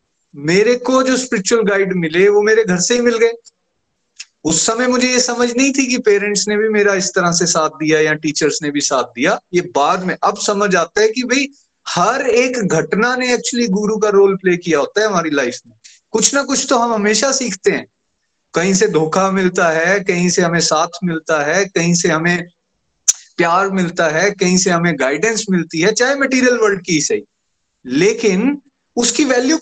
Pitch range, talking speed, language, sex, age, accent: 175-240 Hz, 200 wpm, Hindi, male, 30-49, native